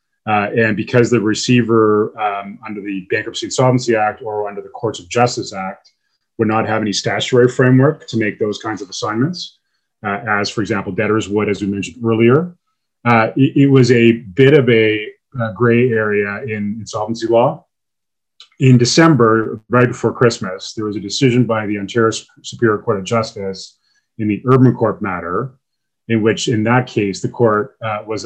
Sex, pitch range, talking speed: male, 105-125 Hz, 180 wpm